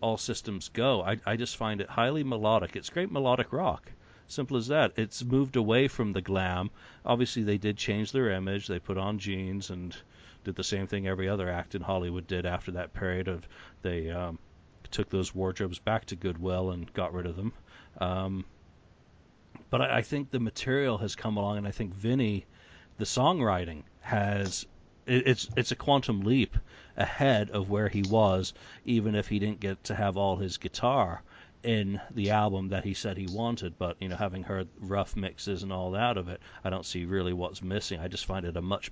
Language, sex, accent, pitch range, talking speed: English, male, American, 90-110 Hz, 200 wpm